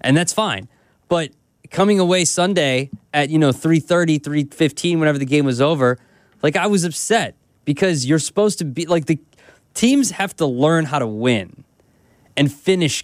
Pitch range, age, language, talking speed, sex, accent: 130-185 Hz, 20-39, English, 170 wpm, male, American